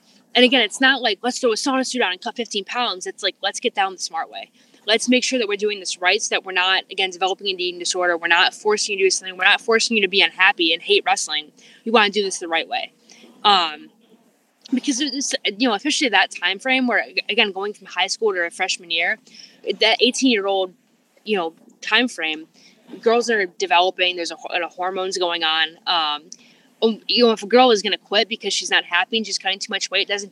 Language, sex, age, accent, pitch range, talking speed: English, female, 10-29, American, 180-235 Hz, 245 wpm